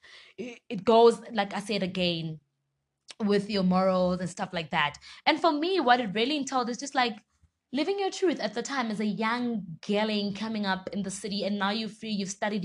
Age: 20-39